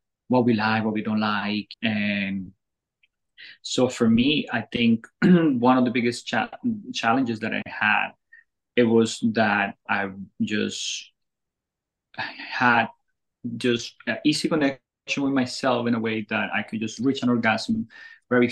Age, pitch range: 20-39, 105-130 Hz